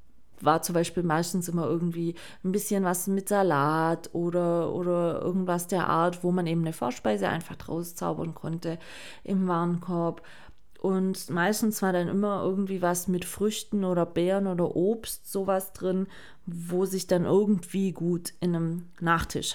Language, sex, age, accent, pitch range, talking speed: German, female, 20-39, German, 170-200 Hz, 155 wpm